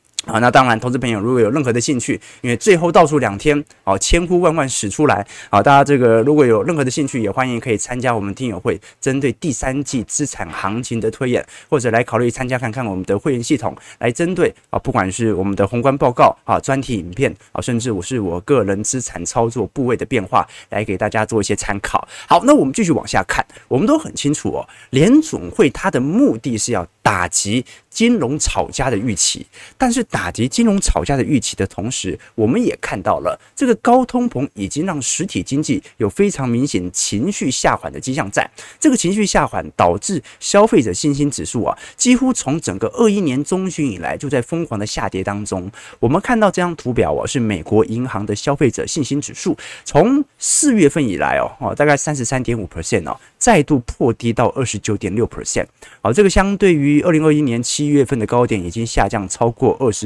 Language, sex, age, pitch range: Chinese, male, 20-39, 110-155 Hz